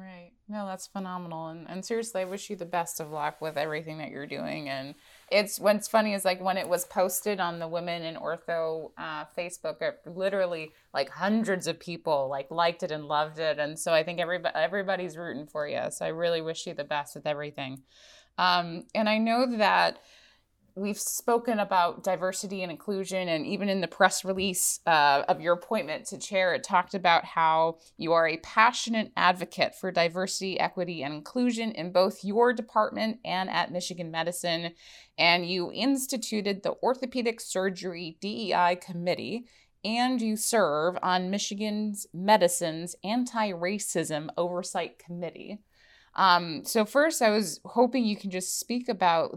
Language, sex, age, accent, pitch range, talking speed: English, female, 20-39, American, 170-205 Hz, 170 wpm